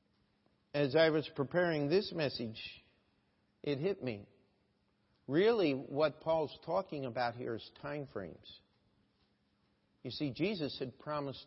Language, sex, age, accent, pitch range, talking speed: English, male, 50-69, American, 130-190 Hz, 120 wpm